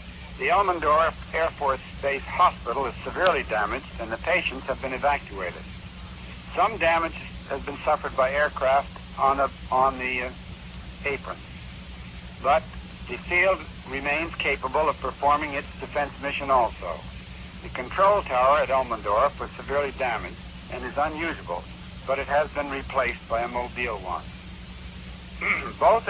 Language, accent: English, American